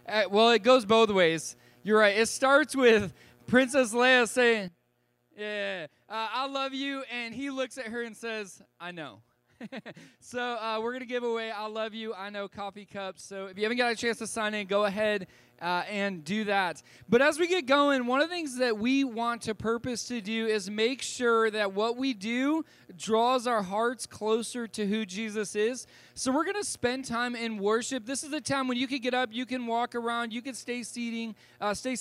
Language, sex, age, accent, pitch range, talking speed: English, male, 20-39, American, 195-245 Hz, 215 wpm